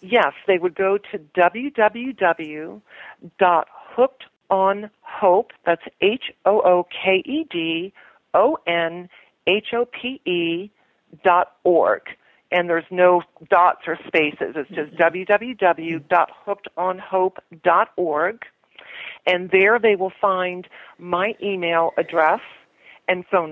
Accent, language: American, English